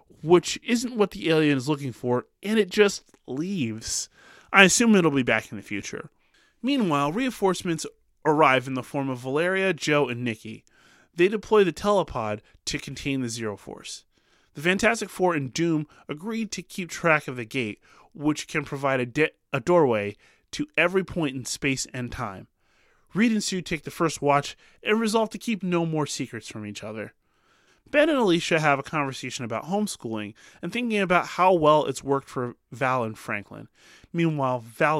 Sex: male